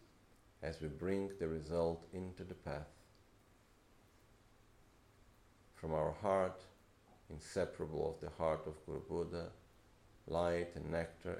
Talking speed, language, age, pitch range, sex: 105 wpm, Italian, 50-69, 80-105 Hz, male